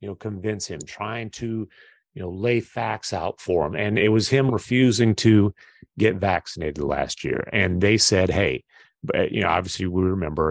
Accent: American